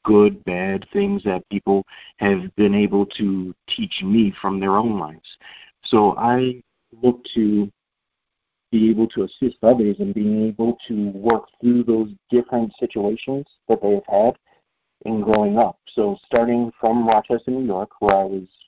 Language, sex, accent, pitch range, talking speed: English, male, American, 100-115 Hz, 155 wpm